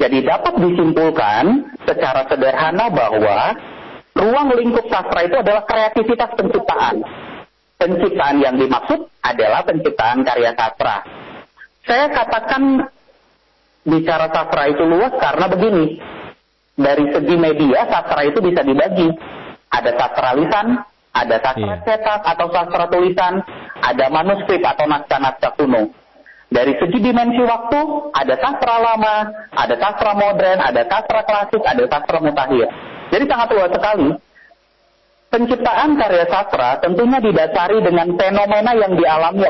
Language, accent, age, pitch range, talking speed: Indonesian, native, 40-59, 160-230 Hz, 120 wpm